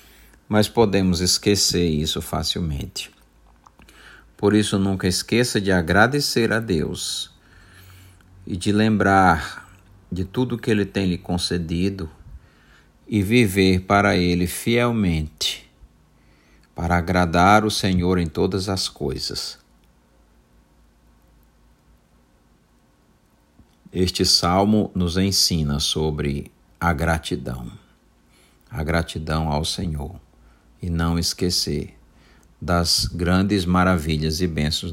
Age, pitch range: 50-69, 75-95 Hz